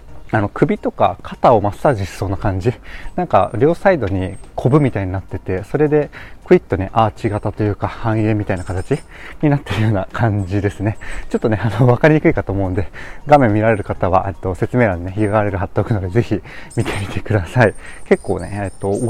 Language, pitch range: Japanese, 100-135 Hz